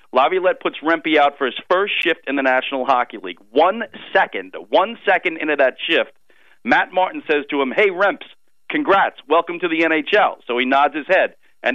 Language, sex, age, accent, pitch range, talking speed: English, male, 40-59, American, 145-190 Hz, 195 wpm